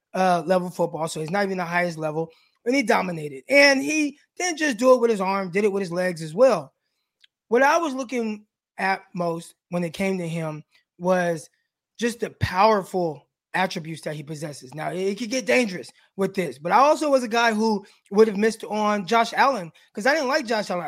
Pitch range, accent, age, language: 190-255 Hz, American, 20-39, English